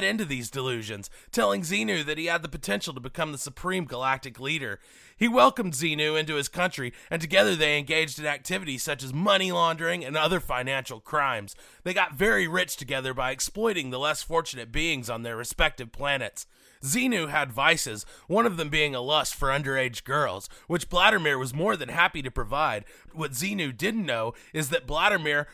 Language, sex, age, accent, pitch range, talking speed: English, male, 30-49, American, 130-170 Hz, 185 wpm